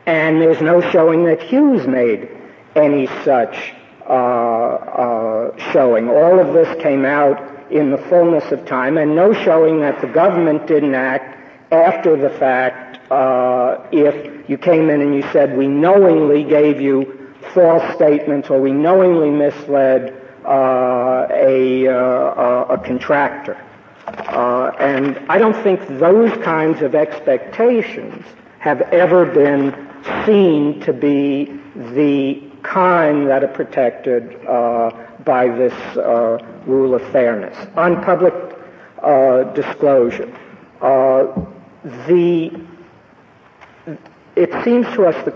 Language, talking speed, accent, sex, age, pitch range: English, 125 wpm, American, male, 60-79, 130-165 Hz